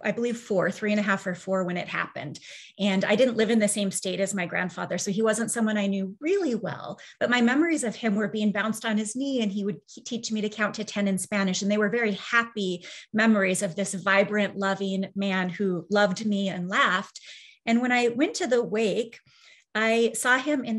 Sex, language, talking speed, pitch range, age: female, English, 230 wpm, 195-230 Hz, 30-49